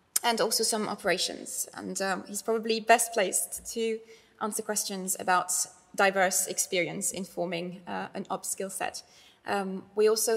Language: English